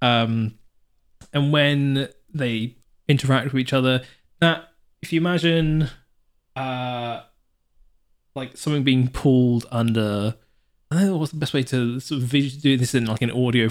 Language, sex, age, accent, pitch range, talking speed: English, male, 20-39, British, 110-140 Hz, 145 wpm